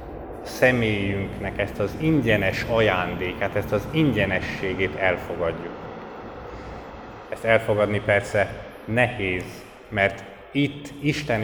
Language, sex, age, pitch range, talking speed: Hungarian, male, 30-49, 90-110 Hz, 90 wpm